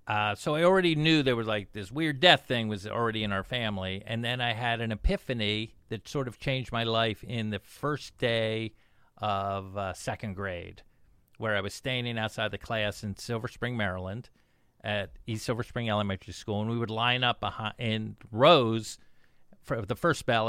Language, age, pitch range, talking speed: English, 50-69, 105-145 Hz, 190 wpm